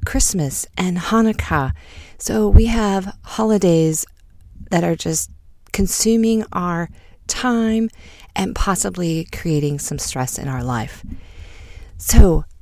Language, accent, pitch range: English, American, 130-195 Hz